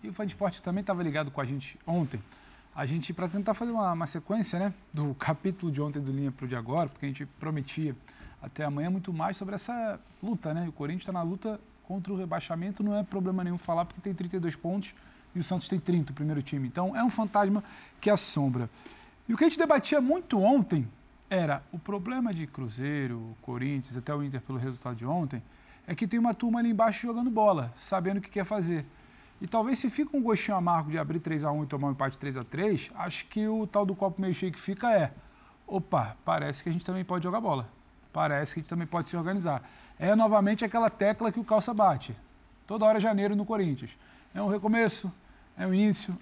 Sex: male